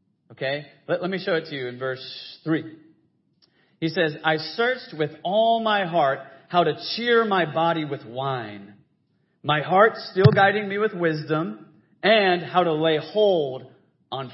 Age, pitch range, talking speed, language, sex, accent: 40-59, 145-185 Hz, 165 wpm, English, male, American